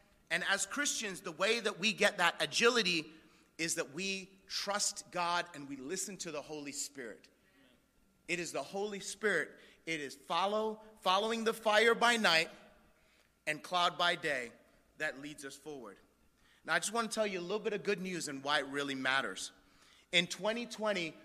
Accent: American